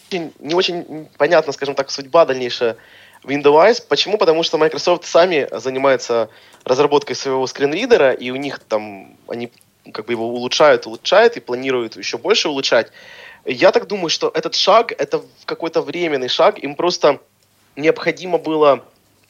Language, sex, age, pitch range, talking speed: Russian, male, 20-39, 120-160 Hz, 145 wpm